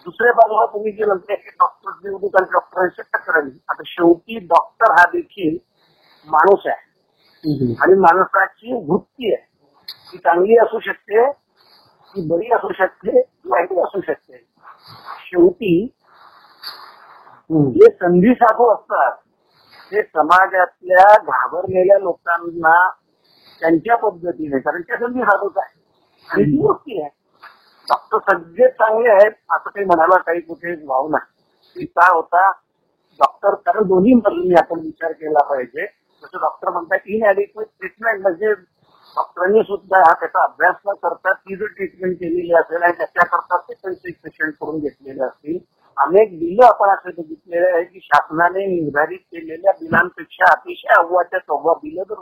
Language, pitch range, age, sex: Marathi, 170-220 Hz, 50-69, male